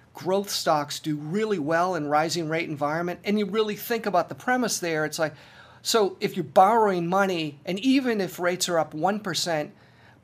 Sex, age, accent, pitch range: male, 50-69, American, 155-205 Hz